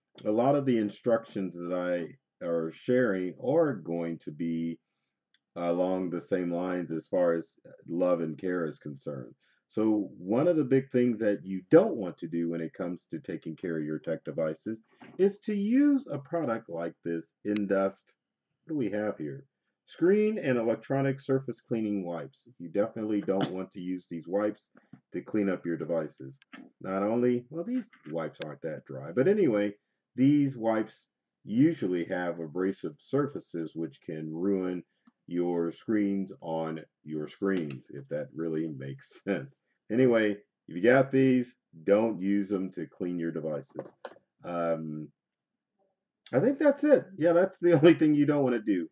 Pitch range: 85-125 Hz